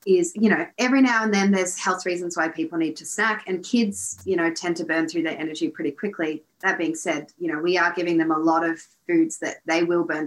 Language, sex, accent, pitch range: English, female, Australian, 165-250 Hz